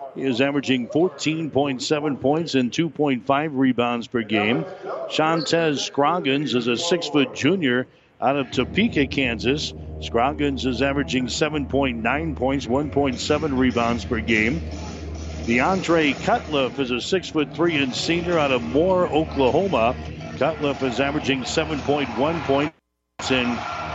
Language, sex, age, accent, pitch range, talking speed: English, male, 60-79, American, 120-145 Hz, 115 wpm